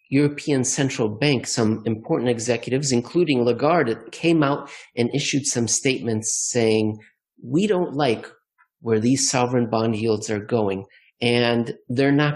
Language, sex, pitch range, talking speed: English, male, 115-150 Hz, 135 wpm